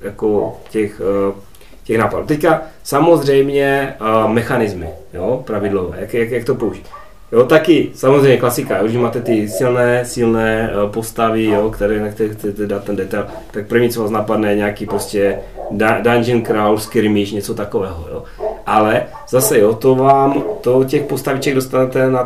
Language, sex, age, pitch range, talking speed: Czech, male, 30-49, 110-135 Hz, 145 wpm